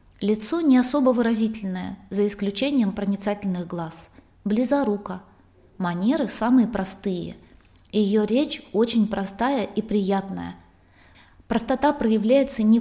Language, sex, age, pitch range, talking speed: Russian, female, 20-39, 195-235 Hz, 100 wpm